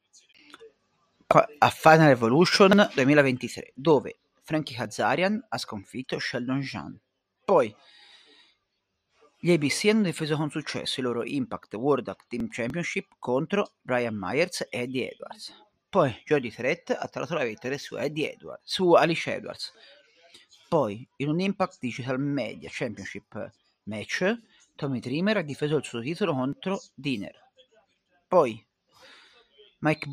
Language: Italian